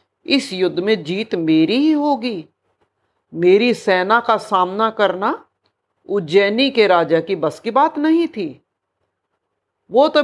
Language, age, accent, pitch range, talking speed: Hindi, 50-69, native, 180-260 Hz, 135 wpm